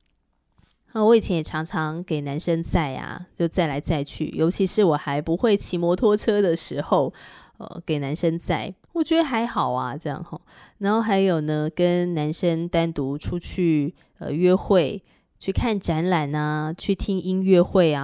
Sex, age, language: female, 20-39, Chinese